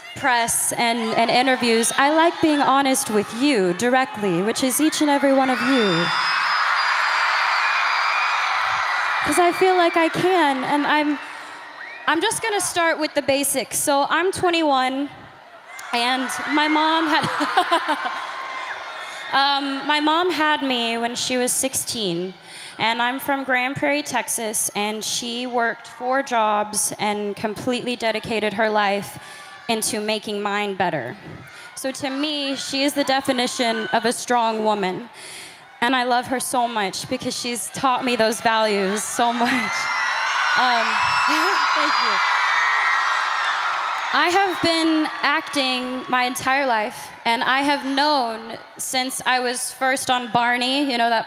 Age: 20-39